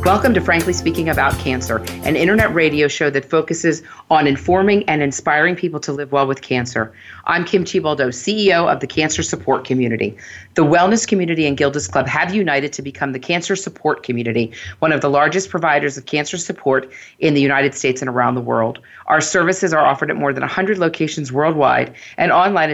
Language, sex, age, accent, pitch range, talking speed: English, female, 40-59, American, 130-170 Hz, 195 wpm